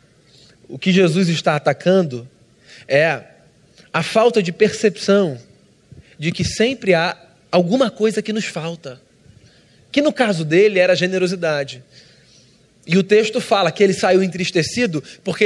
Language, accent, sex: Portuguese, Brazilian, male